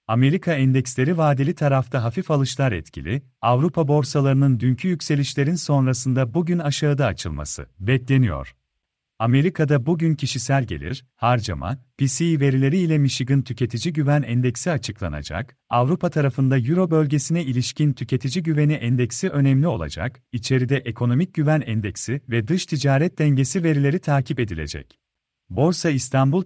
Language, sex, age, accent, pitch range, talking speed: Turkish, male, 40-59, native, 125-155 Hz, 120 wpm